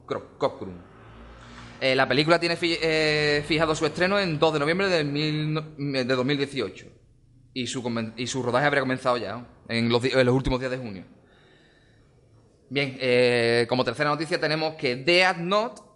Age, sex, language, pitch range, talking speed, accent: 20-39, male, Spanish, 120-160 Hz, 175 wpm, Spanish